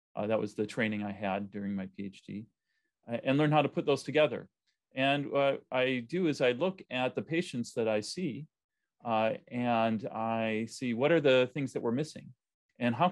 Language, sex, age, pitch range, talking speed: English, male, 40-59, 110-135 Hz, 200 wpm